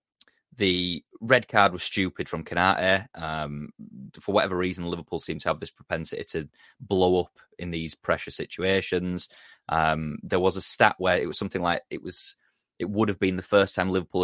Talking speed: 185 wpm